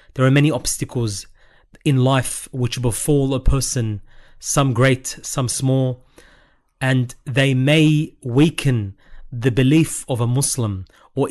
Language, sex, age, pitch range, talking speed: English, male, 30-49, 120-145 Hz, 125 wpm